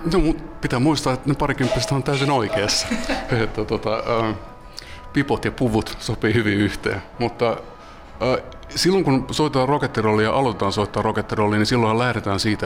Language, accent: Finnish, native